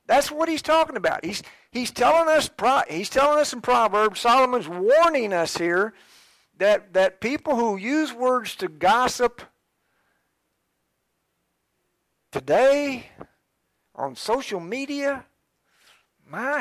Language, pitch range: English, 185-270 Hz